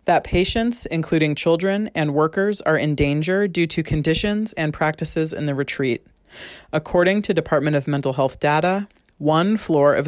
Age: 30-49